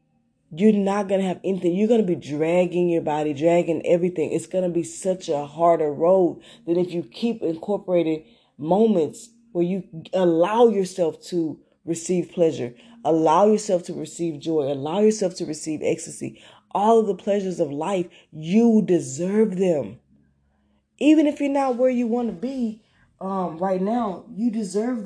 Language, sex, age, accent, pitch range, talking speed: English, female, 20-39, American, 155-215 Hz, 165 wpm